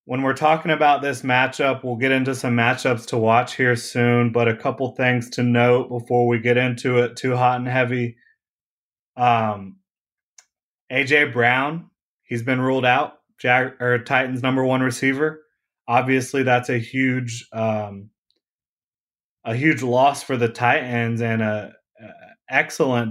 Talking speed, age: 140 wpm, 20-39